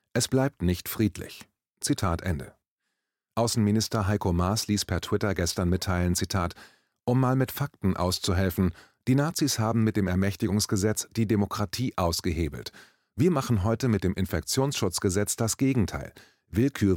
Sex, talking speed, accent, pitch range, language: male, 135 wpm, German, 90-115 Hz, German